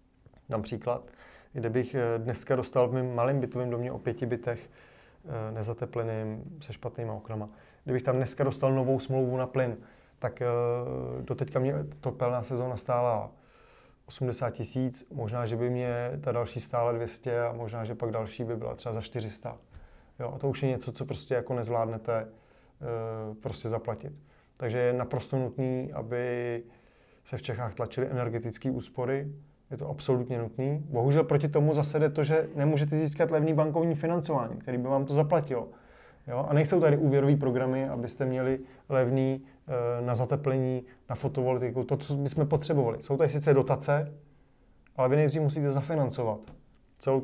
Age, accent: 30-49, native